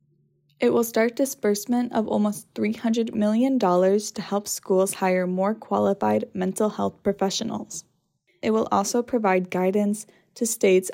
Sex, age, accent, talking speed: female, 10-29, American, 130 wpm